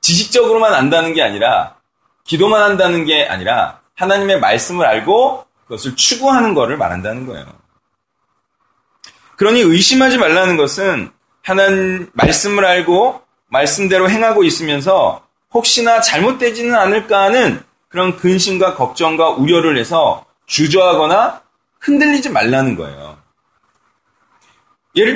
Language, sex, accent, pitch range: Korean, male, native, 175-245 Hz